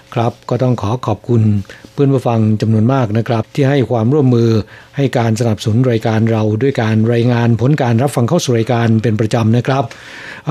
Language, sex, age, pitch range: Thai, male, 60-79, 115-140 Hz